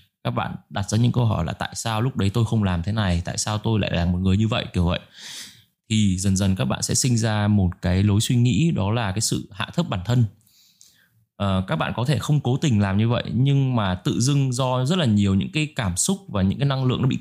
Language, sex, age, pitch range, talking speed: Vietnamese, male, 20-39, 95-125 Hz, 270 wpm